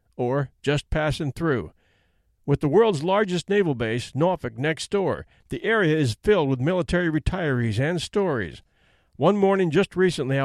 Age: 50-69